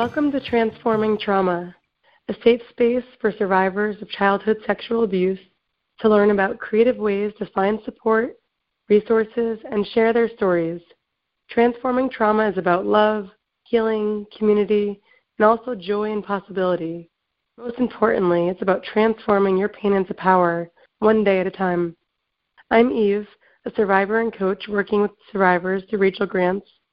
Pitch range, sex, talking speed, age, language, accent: 190-220 Hz, female, 145 wpm, 20-39, English, American